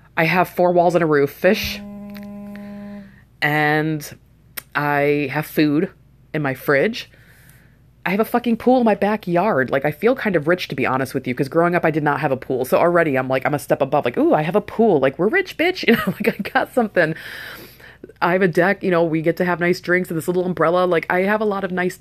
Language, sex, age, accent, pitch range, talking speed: English, female, 20-39, American, 140-175 Hz, 245 wpm